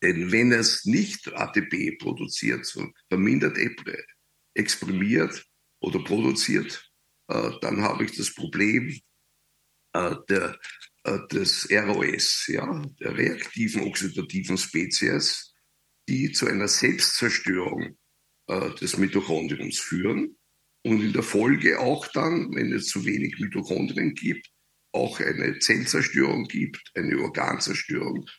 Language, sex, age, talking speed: German, male, 60-79, 105 wpm